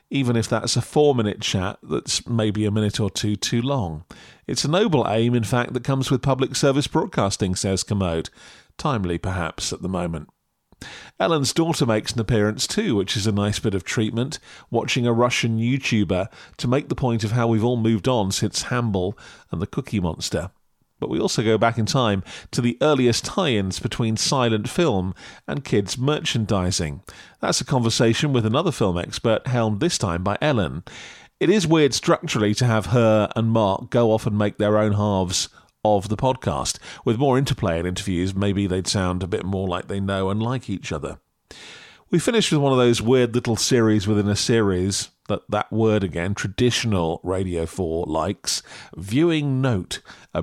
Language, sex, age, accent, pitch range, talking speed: English, male, 40-59, British, 95-125 Hz, 185 wpm